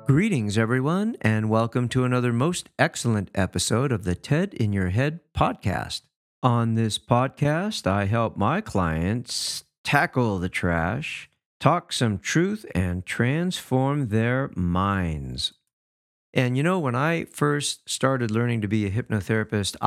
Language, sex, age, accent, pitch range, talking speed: English, male, 50-69, American, 100-140 Hz, 135 wpm